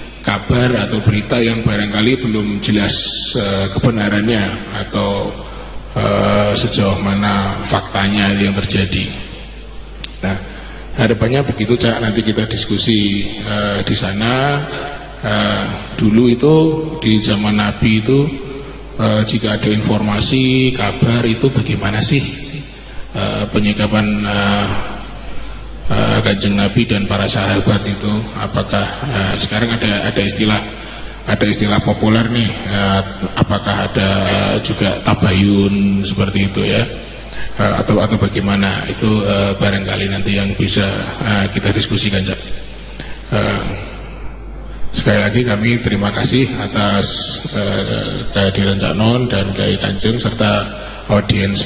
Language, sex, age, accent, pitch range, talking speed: Indonesian, male, 20-39, native, 100-115 Hz, 115 wpm